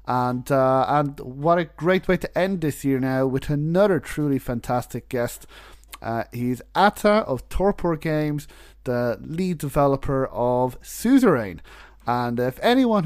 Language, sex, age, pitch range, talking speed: English, male, 30-49, 125-160 Hz, 140 wpm